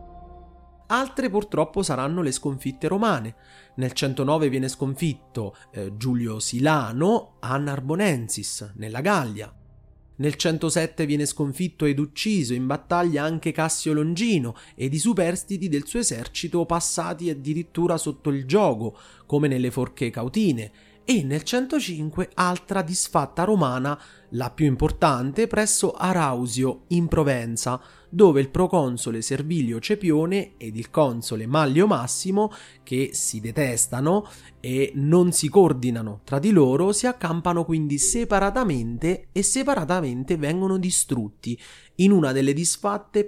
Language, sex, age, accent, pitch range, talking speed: Italian, male, 30-49, native, 130-180 Hz, 120 wpm